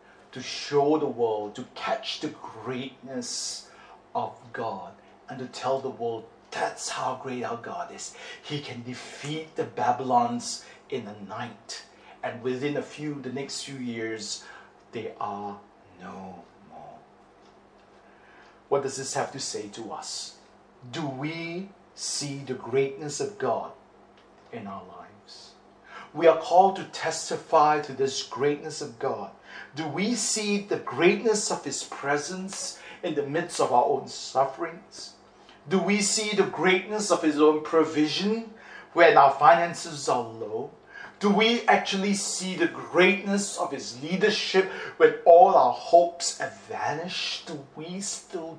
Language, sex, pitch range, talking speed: English, male, 140-195 Hz, 145 wpm